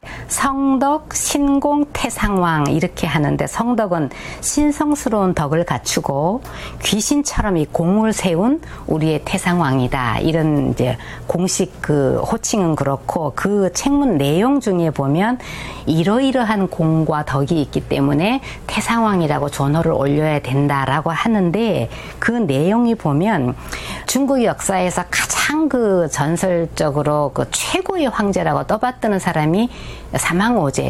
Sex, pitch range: female, 150-230 Hz